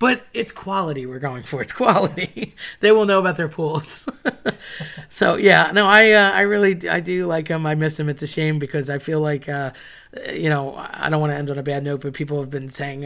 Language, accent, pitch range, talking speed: English, American, 145-175 Hz, 240 wpm